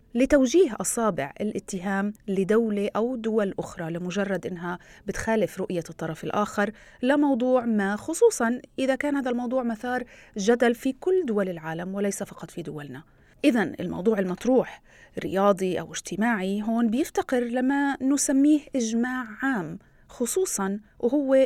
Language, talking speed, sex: Arabic, 125 wpm, female